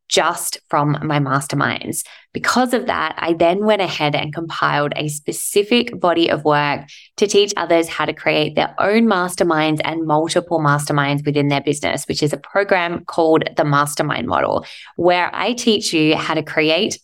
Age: 20-39